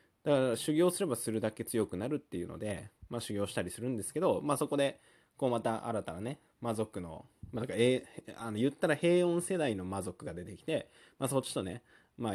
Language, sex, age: Japanese, male, 20-39